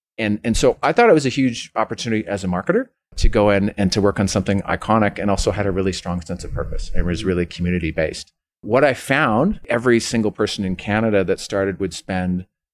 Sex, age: male, 40-59